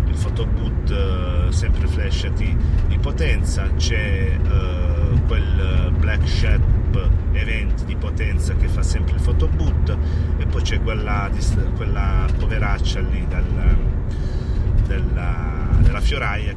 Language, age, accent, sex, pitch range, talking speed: Italian, 30-49, native, male, 75-90 Hz, 120 wpm